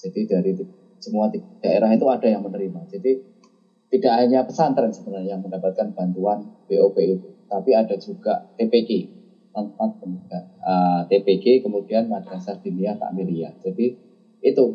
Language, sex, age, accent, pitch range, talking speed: Indonesian, male, 20-39, native, 105-160 Hz, 125 wpm